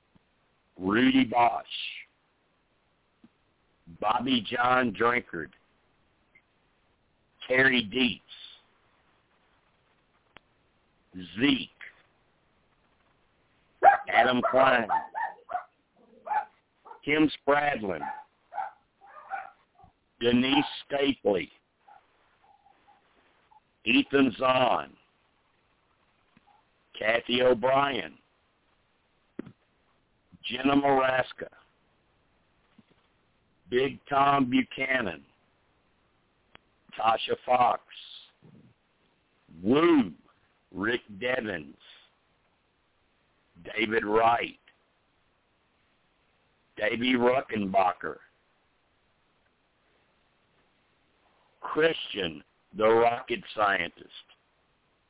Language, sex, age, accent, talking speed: English, male, 60-79, American, 40 wpm